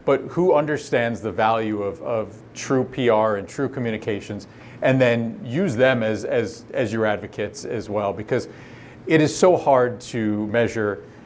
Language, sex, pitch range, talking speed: English, male, 110-130 Hz, 160 wpm